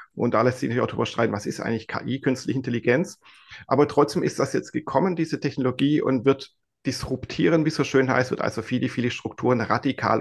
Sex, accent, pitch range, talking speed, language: male, German, 120-145 Hz, 210 wpm, German